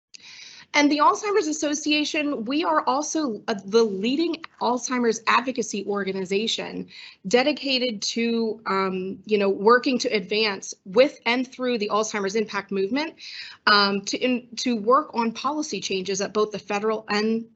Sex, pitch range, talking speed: female, 195-245 Hz, 135 wpm